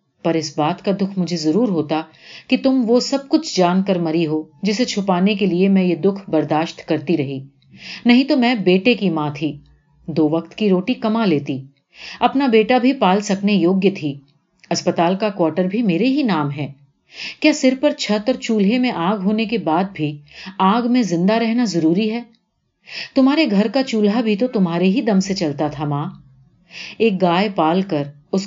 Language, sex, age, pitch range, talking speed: Urdu, female, 50-69, 165-215 Hz, 190 wpm